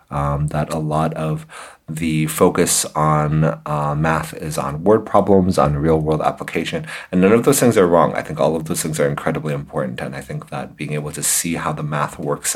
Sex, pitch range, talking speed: male, 75-85 Hz, 215 wpm